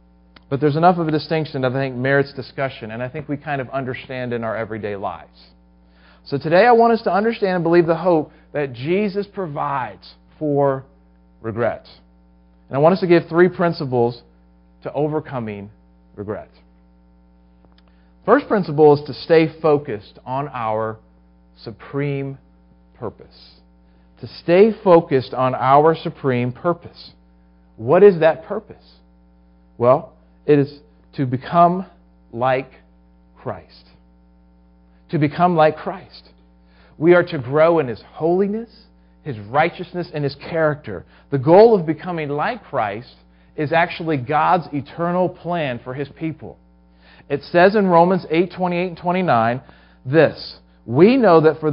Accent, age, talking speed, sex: American, 40-59, 140 wpm, male